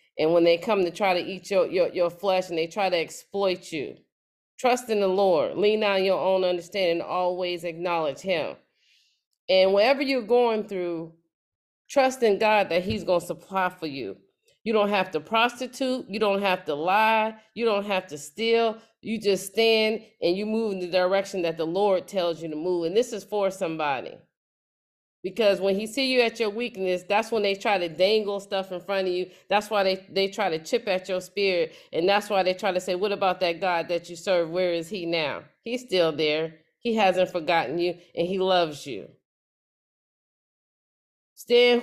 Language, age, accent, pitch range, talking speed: English, 40-59, American, 180-215 Hz, 200 wpm